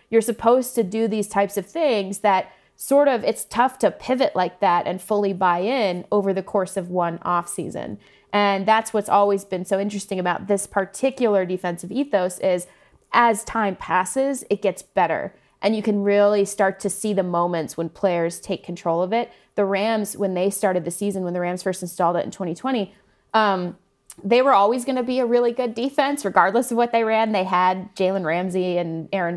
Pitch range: 185-225 Hz